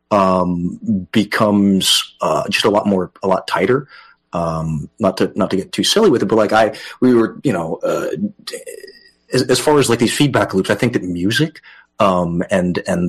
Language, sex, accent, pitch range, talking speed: English, male, American, 95-130 Hz, 195 wpm